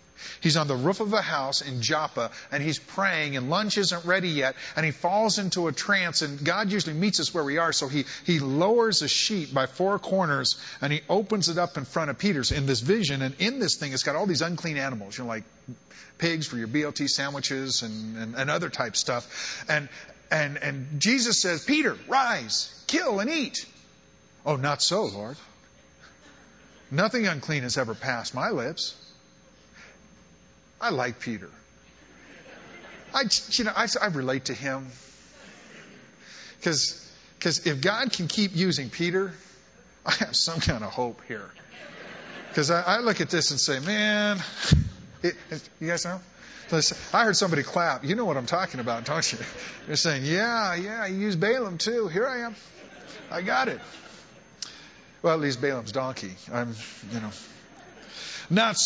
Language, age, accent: English, 40-59, American